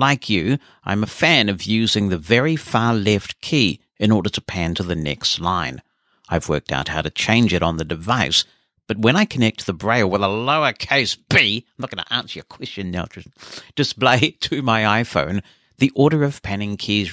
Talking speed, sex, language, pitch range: 200 wpm, male, English, 90-120 Hz